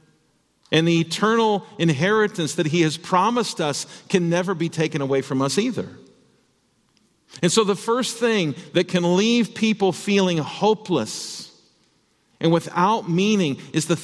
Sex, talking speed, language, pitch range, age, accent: male, 140 wpm, English, 130-185 Hz, 50-69, American